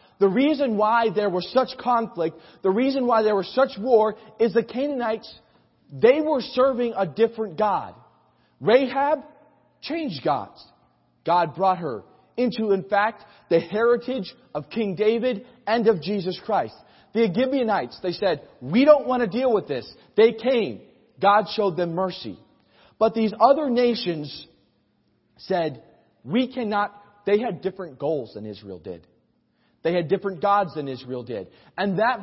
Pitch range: 170-230 Hz